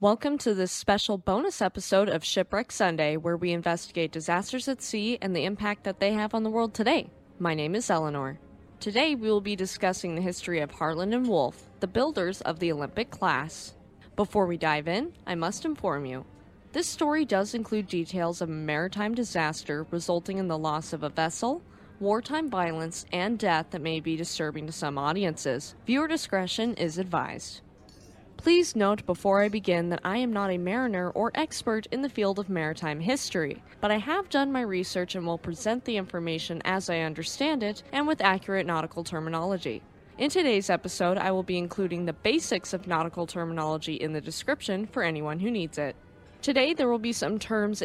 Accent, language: American, English